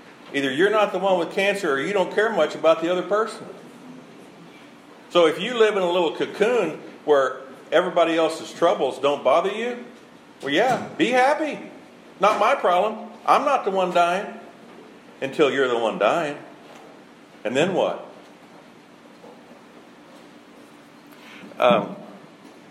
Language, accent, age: English, American, 50-69